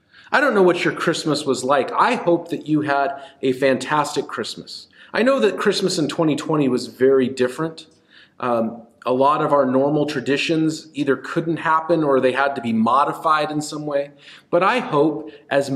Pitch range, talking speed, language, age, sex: 130-155 Hz, 185 wpm, English, 40-59, male